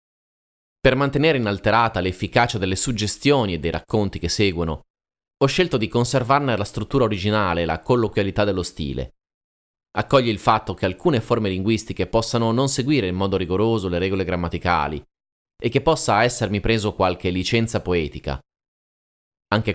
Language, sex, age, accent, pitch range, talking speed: Italian, male, 30-49, native, 90-120 Hz, 145 wpm